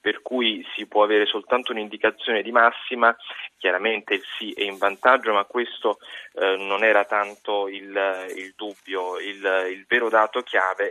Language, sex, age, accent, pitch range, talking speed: Italian, male, 20-39, native, 100-115 Hz, 160 wpm